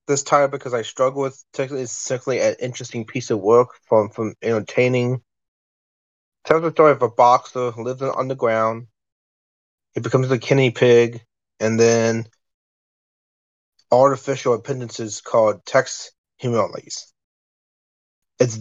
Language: English